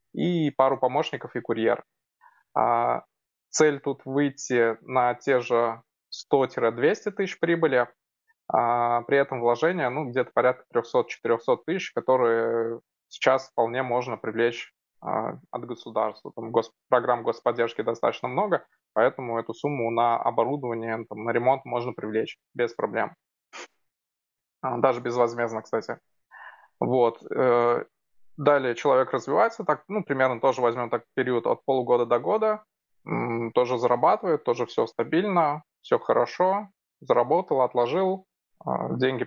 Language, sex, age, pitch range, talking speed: Russian, male, 20-39, 120-150 Hz, 115 wpm